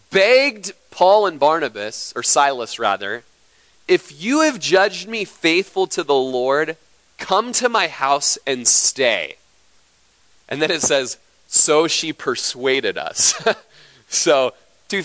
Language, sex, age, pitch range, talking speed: English, male, 30-49, 130-215 Hz, 130 wpm